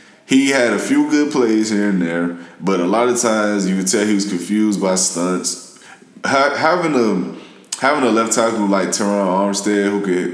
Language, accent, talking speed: English, American, 185 wpm